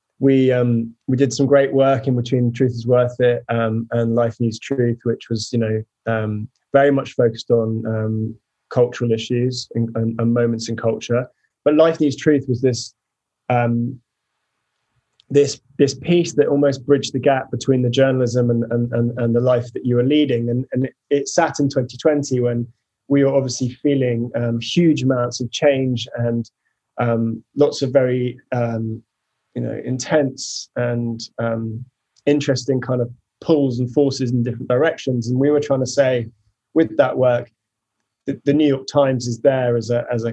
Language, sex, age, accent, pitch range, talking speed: English, male, 20-39, British, 115-135 Hz, 180 wpm